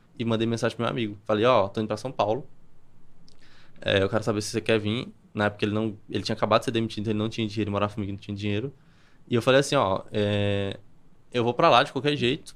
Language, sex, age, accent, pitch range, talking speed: Portuguese, male, 20-39, Brazilian, 110-135 Hz, 270 wpm